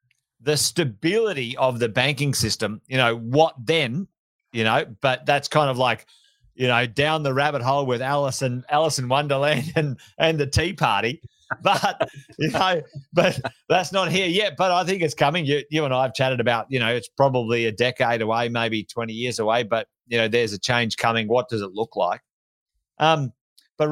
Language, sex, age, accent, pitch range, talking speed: English, male, 30-49, Australian, 115-150 Hz, 200 wpm